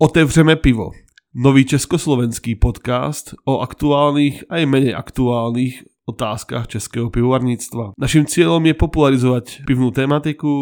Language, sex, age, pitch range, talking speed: Czech, male, 20-39, 115-135 Hz, 105 wpm